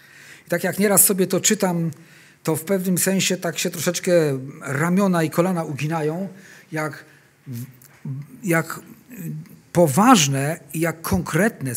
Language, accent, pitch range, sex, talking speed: Polish, native, 150-200 Hz, male, 115 wpm